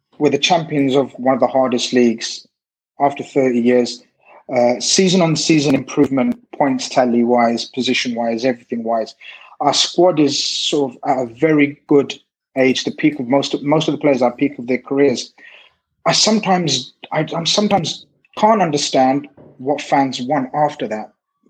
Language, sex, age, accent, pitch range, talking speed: English, male, 30-49, British, 135-185 Hz, 165 wpm